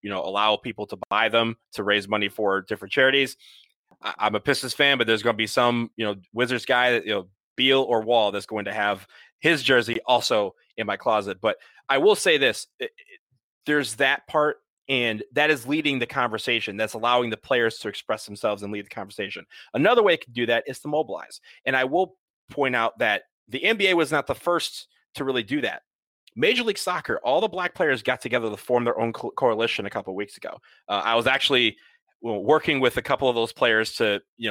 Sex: male